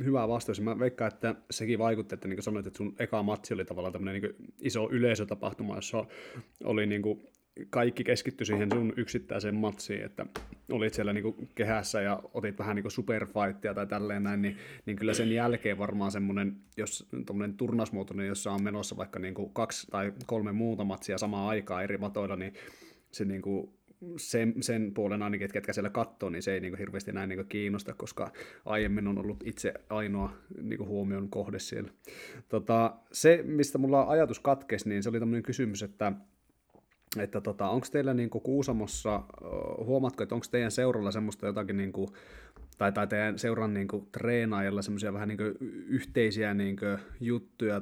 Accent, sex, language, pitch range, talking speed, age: native, male, Finnish, 100-115 Hz, 175 wpm, 30-49